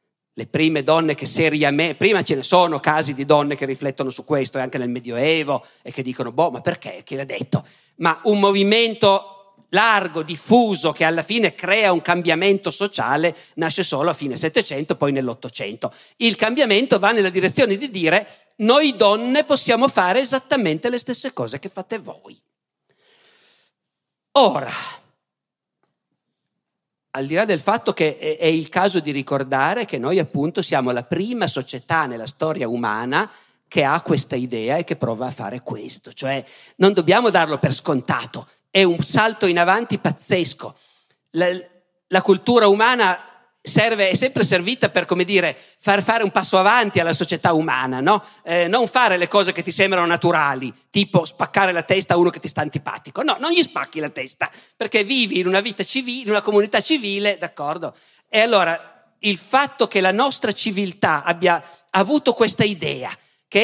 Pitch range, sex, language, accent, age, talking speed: 155-210 Hz, male, Italian, native, 50-69, 170 wpm